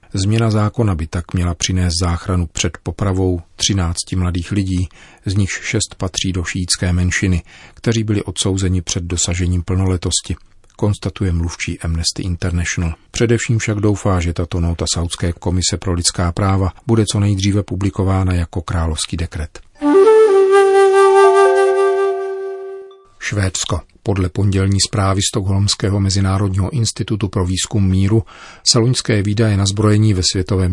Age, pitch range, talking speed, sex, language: 40-59, 90-105 Hz, 125 wpm, male, Czech